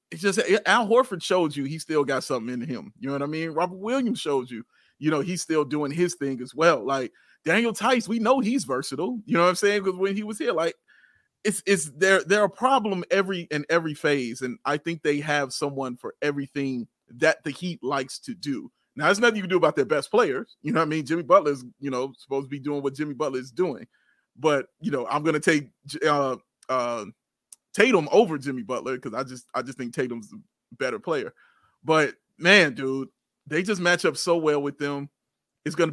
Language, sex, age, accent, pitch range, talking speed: English, male, 30-49, American, 140-180 Hz, 225 wpm